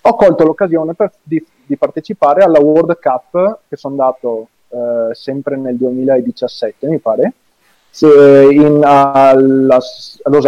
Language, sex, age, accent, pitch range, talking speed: Italian, male, 30-49, native, 130-155 Hz, 130 wpm